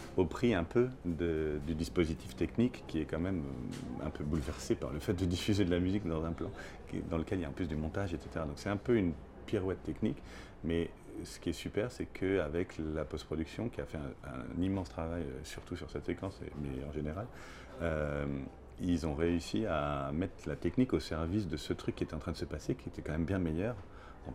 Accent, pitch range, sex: French, 80-100 Hz, male